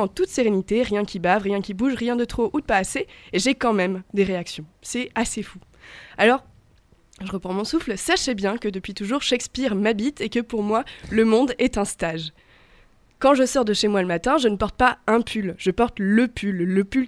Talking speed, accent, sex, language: 230 wpm, French, female, French